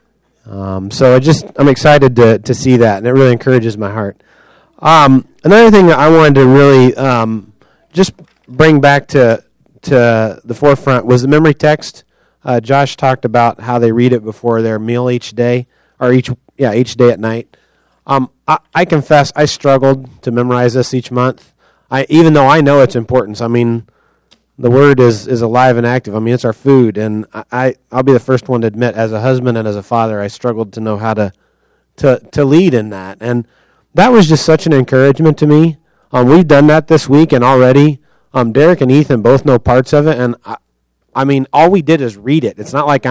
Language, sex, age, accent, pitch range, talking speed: English, male, 30-49, American, 120-145 Hz, 215 wpm